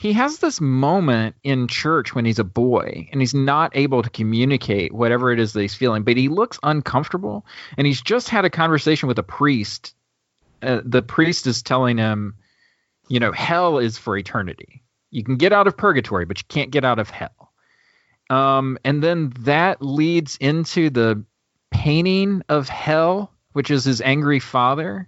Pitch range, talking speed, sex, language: 120-160 Hz, 180 wpm, male, English